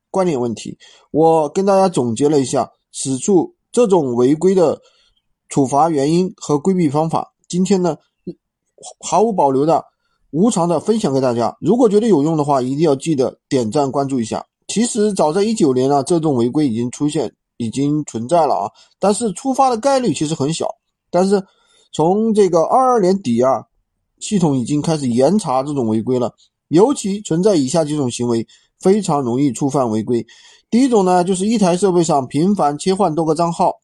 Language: Chinese